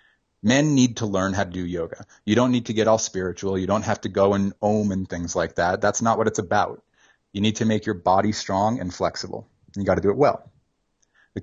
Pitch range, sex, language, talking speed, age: 90-110 Hz, male, English, 245 wpm, 30-49